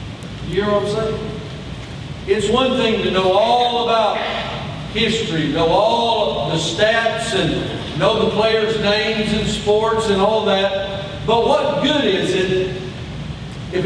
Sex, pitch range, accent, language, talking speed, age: male, 155-210 Hz, American, English, 145 wpm, 50-69